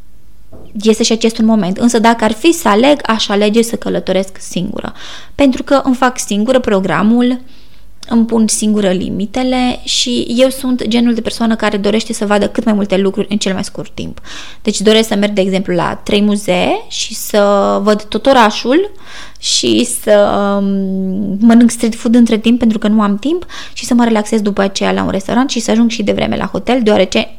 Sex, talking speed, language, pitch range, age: female, 190 wpm, Romanian, 205-245 Hz, 20-39